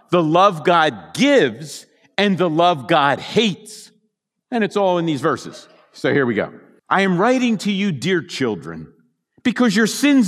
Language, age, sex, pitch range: English, 50-69, male, 140-210 Hz